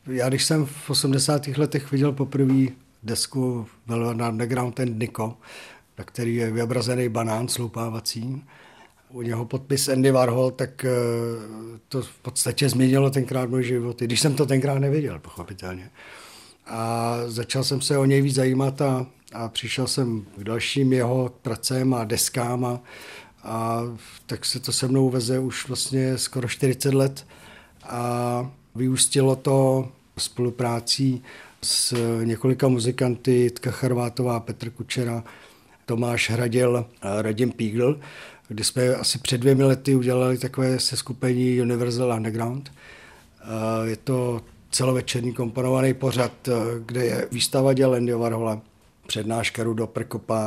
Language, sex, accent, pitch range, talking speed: Czech, male, native, 115-130 Hz, 130 wpm